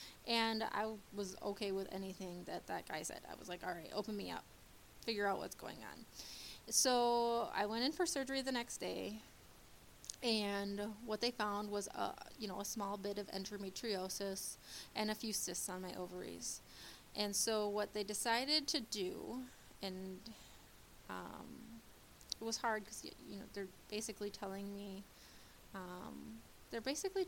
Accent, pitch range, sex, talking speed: American, 195-225 Hz, female, 165 wpm